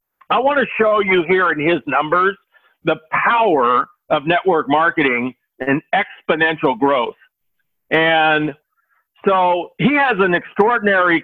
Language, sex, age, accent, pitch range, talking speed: English, male, 50-69, American, 170-240 Hz, 125 wpm